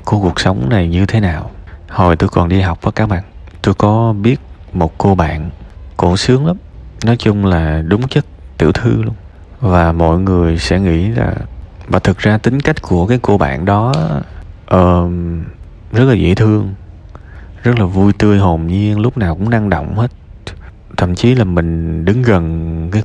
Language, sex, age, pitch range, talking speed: Vietnamese, male, 20-39, 85-105 Hz, 190 wpm